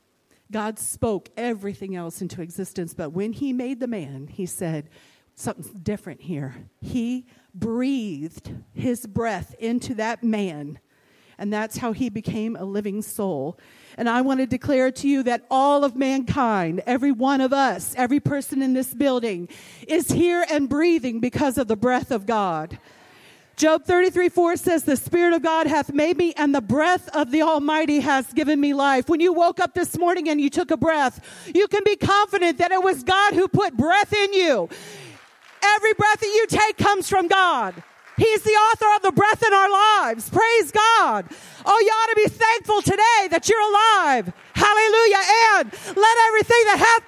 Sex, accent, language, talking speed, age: female, American, English, 180 wpm, 50-69